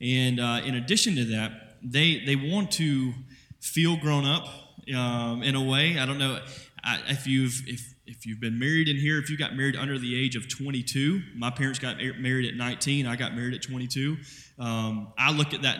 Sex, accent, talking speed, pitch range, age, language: male, American, 205 wpm, 125-155 Hz, 20-39, English